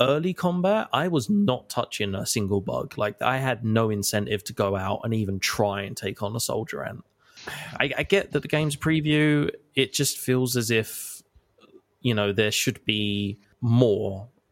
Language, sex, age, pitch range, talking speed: English, male, 20-39, 105-140 Hz, 180 wpm